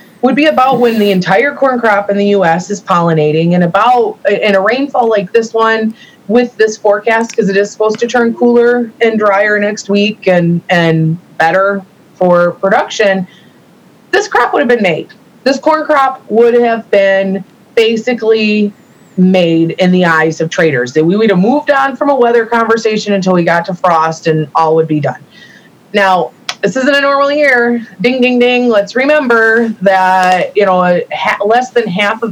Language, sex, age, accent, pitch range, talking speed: English, female, 20-39, American, 185-235 Hz, 180 wpm